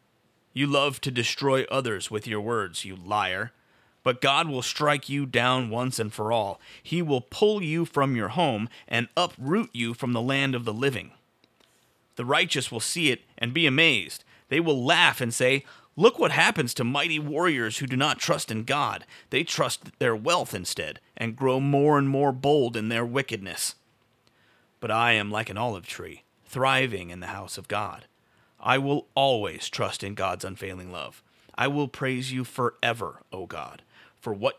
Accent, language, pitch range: American, English, 110-140 Hz